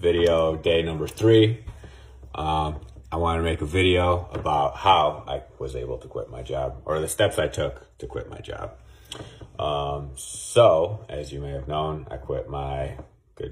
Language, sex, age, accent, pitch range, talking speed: English, male, 30-49, American, 70-80 Hz, 180 wpm